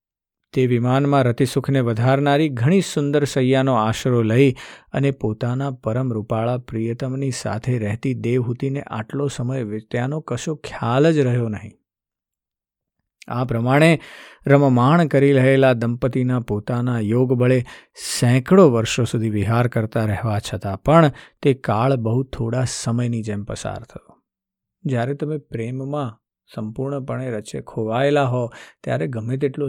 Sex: male